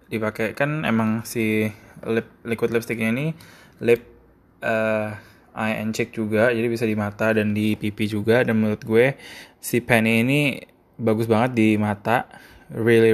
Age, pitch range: 20-39, 105-120 Hz